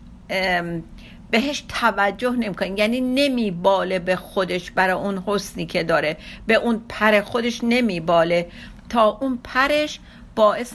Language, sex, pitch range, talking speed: Persian, female, 195-245 Hz, 130 wpm